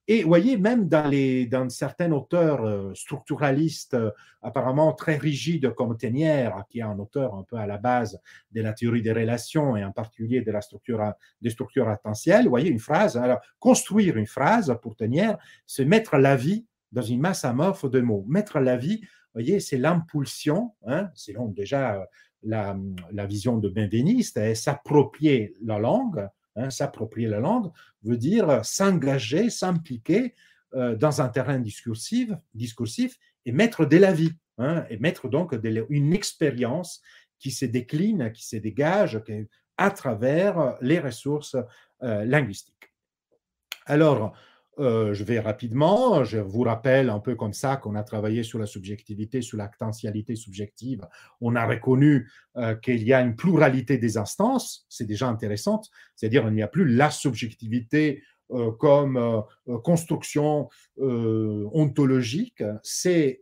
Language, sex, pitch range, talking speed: Portuguese, male, 110-155 Hz, 155 wpm